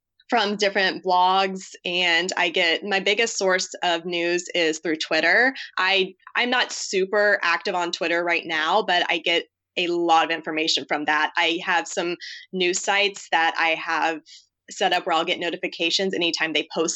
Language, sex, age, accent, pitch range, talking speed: English, female, 20-39, American, 165-195 Hz, 175 wpm